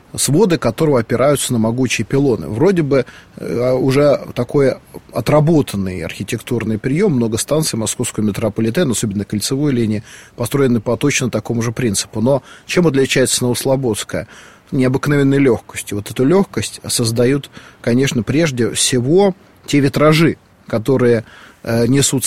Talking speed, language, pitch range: 120 wpm, Russian, 115-145 Hz